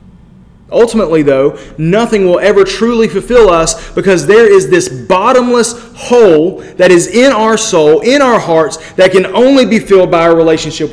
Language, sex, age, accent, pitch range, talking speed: English, male, 30-49, American, 170-225 Hz, 165 wpm